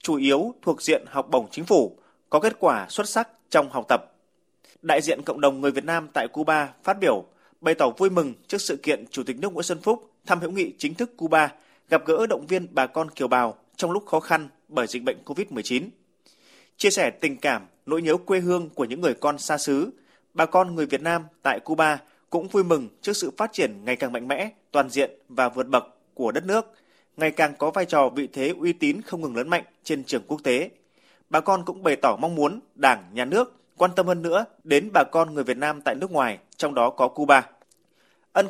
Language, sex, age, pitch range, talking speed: Vietnamese, male, 20-39, 140-180 Hz, 230 wpm